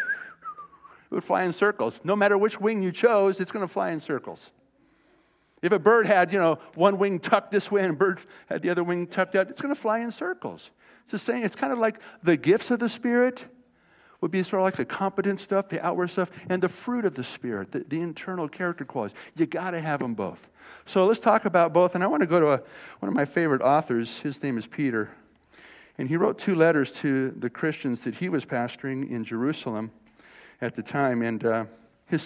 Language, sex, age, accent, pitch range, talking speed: English, male, 50-69, American, 130-200 Hz, 230 wpm